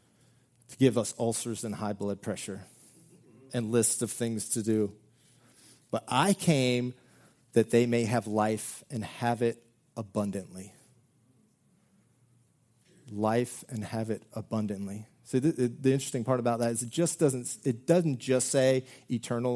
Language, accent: English, American